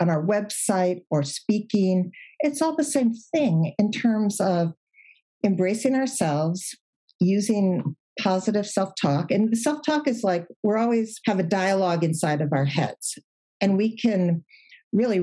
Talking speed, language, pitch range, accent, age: 140 wpm, English, 165-225 Hz, American, 50-69